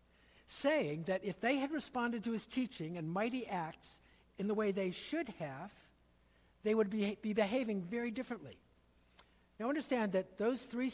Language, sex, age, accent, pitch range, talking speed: English, male, 60-79, American, 165-235 Hz, 165 wpm